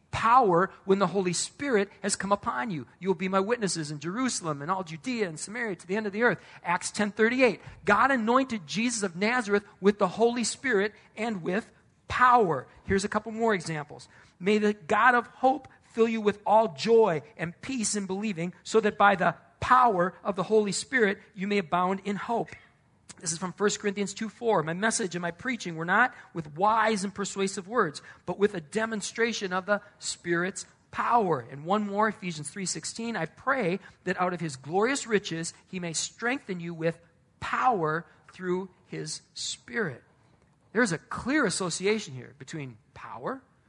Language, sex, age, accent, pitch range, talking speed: English, male, 40-59, American, 170-215 Hz, 180 wpm